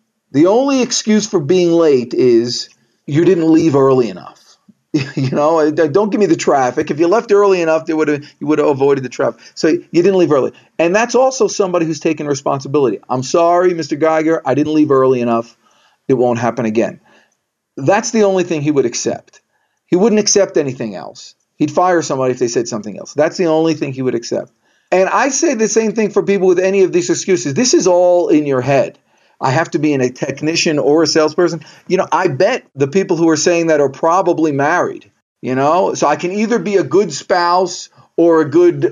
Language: English